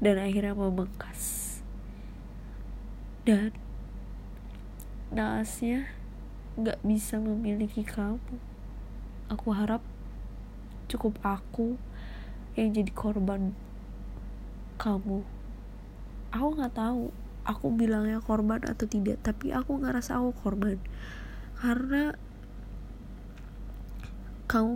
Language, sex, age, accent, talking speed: Indonesian, female, 20-39, native, 80 wpm